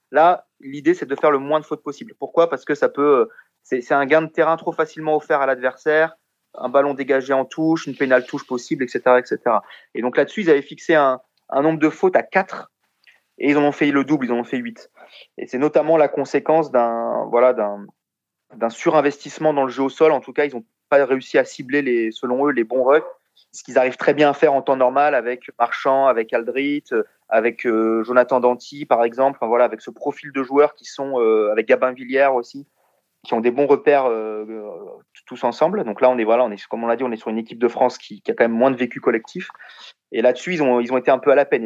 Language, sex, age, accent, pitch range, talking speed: French, male, 30-49, French, 125-160 Hz, 245 wpm